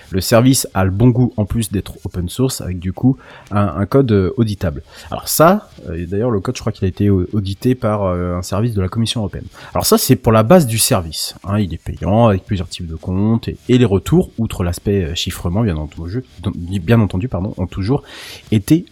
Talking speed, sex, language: 220 wpm, male, French